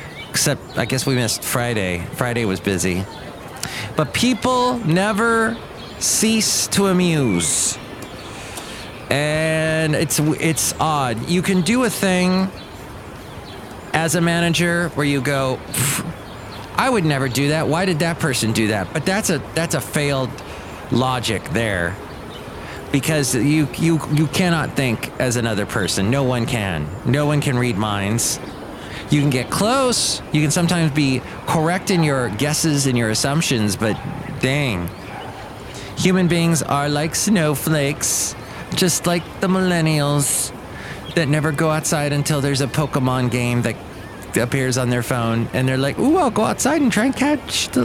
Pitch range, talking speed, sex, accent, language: 115-165 Hz, 150 wpm, male, American, English